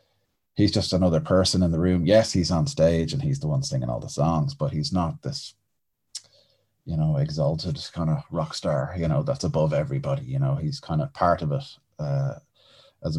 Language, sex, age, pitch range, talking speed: English, male, 20-39, 80-110 Hz, 205 wpm